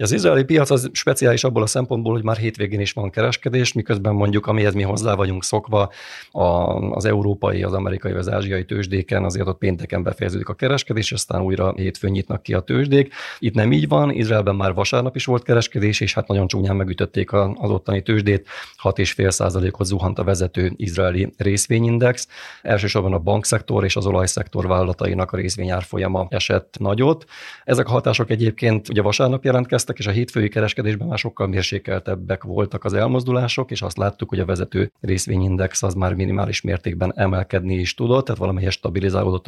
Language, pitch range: Hungarian, 95-110 Hz